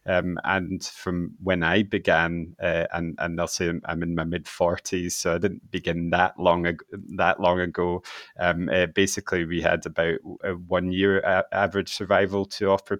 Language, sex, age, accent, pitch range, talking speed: English, male, 30-49, British, 85-100 Hz, 180 wpm